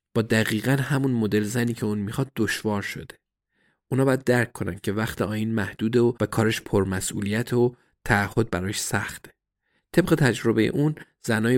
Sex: male